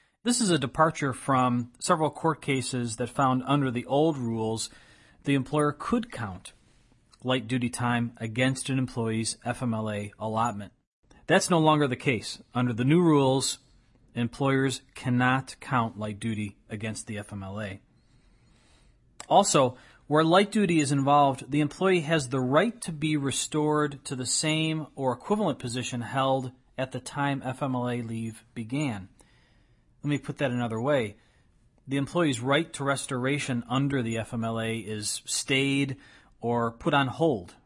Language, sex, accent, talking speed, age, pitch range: English, male, American, 145 wpm, 40-59, 115-140 Hz